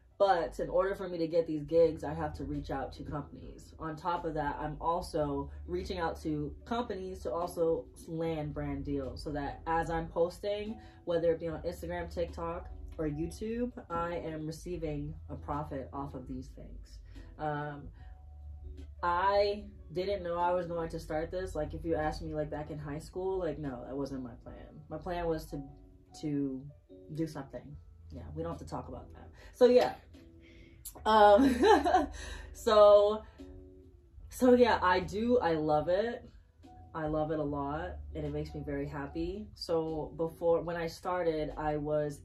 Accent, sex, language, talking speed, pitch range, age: American, female, English, 175 wpm, 140-175 Hz, 20-39